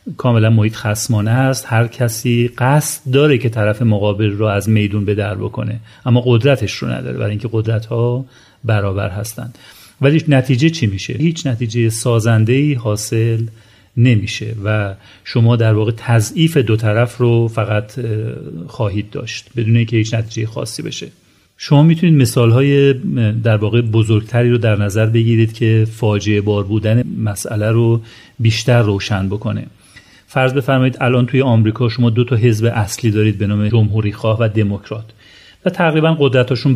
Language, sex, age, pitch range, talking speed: Persian, male, 40-59, 110-125 Hz, 150 wpm